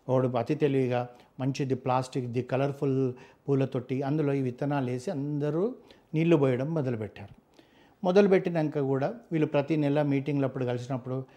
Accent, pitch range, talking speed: native, 125-150 Hz, 130 wpm